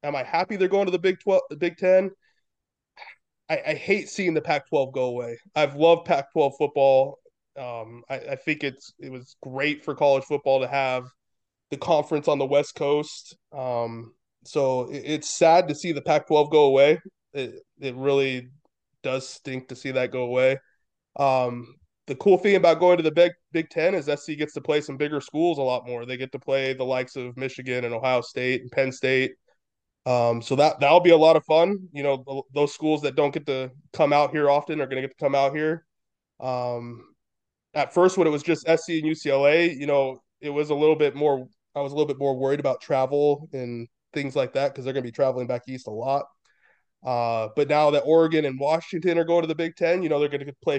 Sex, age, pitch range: male, 20-39, 130-155 Hz